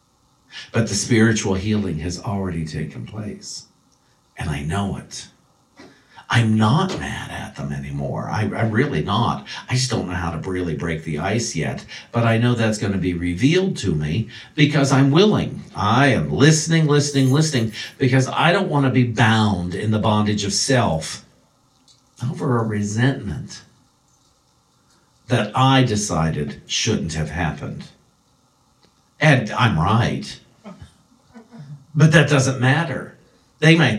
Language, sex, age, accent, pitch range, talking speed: English, male, 50-69, American, 100-145 Hz, 140 wpm